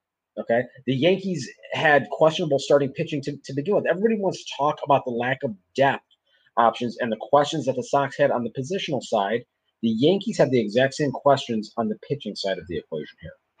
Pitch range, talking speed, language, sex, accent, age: 120-155 Hz, 205 wpm, English, male, American, 30-49